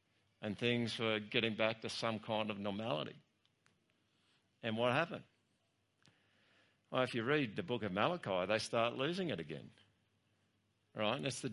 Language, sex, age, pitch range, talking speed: English, male, 50-69, 100-120 Hz, 155 wpm